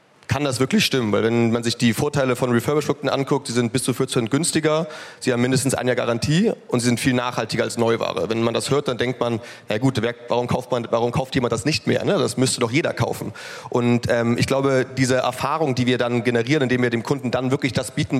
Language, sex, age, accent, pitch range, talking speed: German, male, 30-49, German, 125-145 Hz, 245 wpm